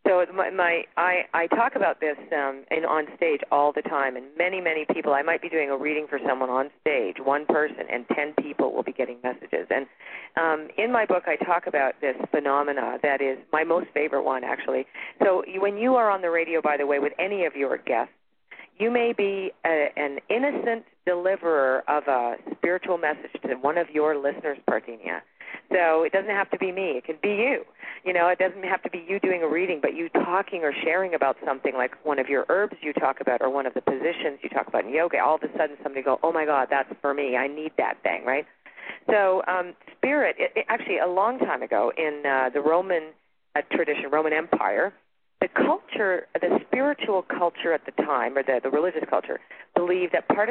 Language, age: English, 40-59